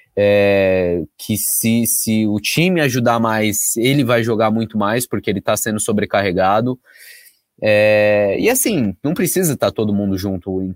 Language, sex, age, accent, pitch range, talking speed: Portuguese, male, 20-39, Brazilian, 110-145 Hz, 145 wpm